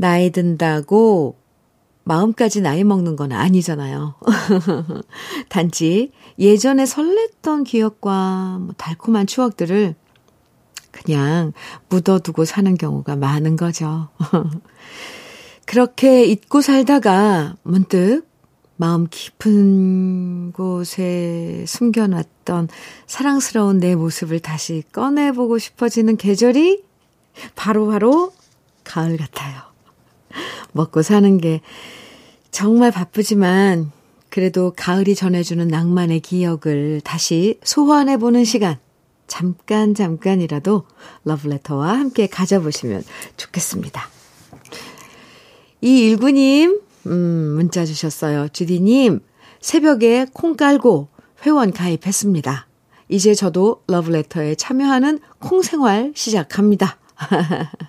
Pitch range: 165-235 Hz